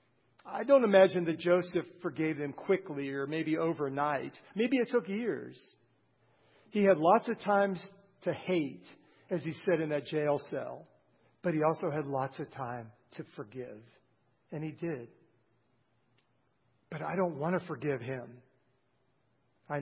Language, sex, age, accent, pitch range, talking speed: English, male, 50-69, American, 135-195 Hz, 150 wpm